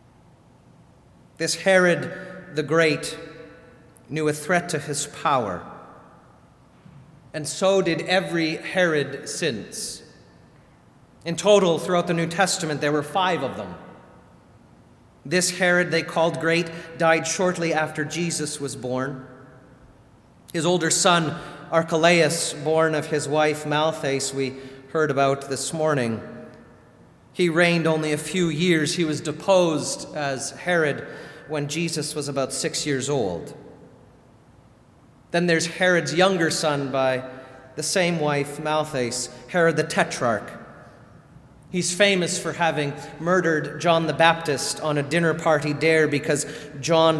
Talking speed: 125 wpm